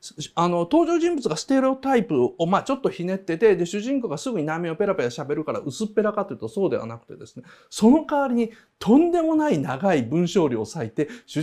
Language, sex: Japanese, male